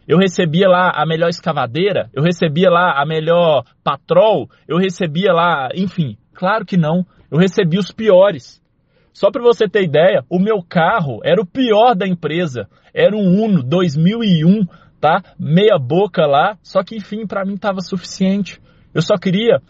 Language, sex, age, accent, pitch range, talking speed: Portuguese, male, 20-39, Brazilian, 155-190 Hz, 165 wpm